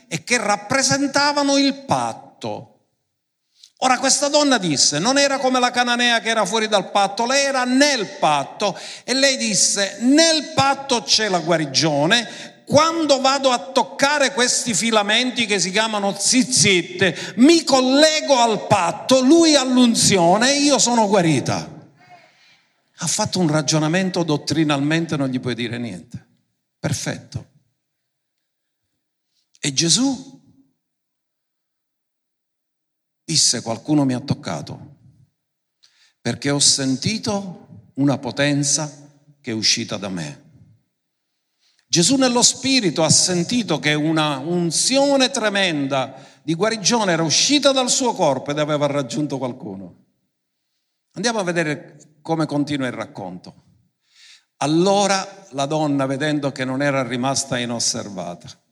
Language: Italian